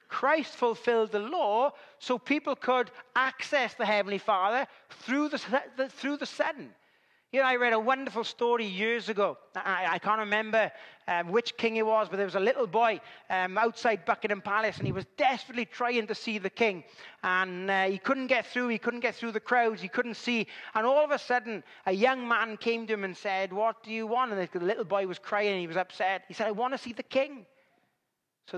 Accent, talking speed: British, 220 wpm